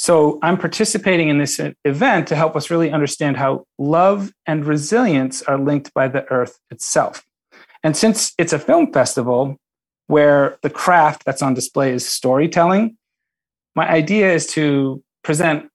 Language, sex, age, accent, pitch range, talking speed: English, male, 30-49, American, 140-180 Hz, 150 wpm